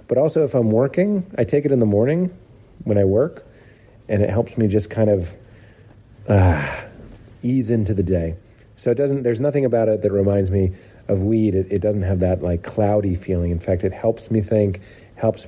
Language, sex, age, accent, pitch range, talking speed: English, male, 40-59, American, 95-115 Hz, 205 wpm